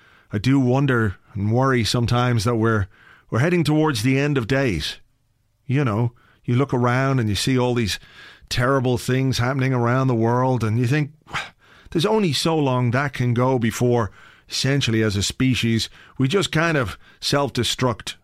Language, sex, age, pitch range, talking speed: English, male, 40-59, 115-135 Hz, 170 wpm